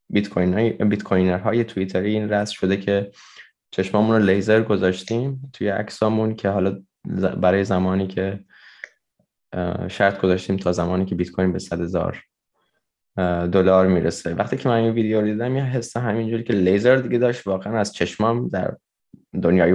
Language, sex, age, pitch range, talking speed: Persian, male, 20-39, 95-110 Hz, 150 wpm